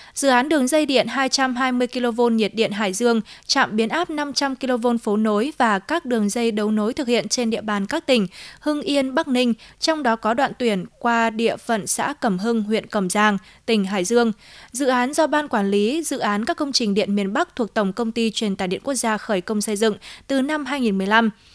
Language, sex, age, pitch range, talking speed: Vietnamese, female, 20-39, 210-265 Hz, 230 wpm